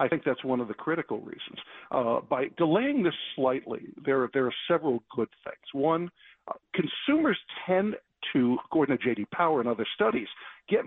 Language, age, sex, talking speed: English, 50-69, male, 180 wpm